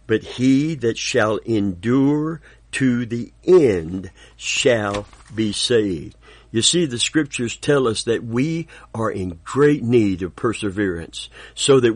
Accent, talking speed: American, 135 wpm